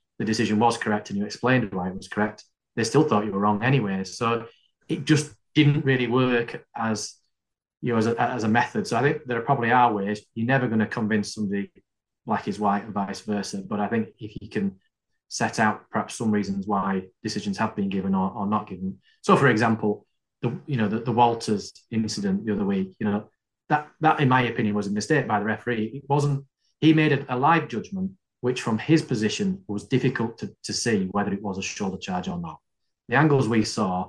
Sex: male